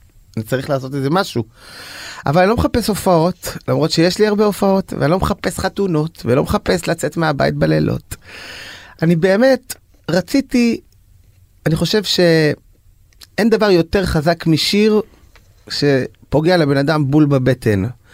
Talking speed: 130 wpm